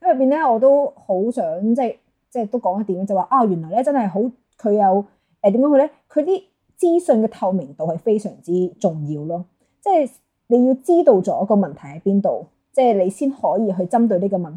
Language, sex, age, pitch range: Chinese, female, 20-39, 185-250 Hz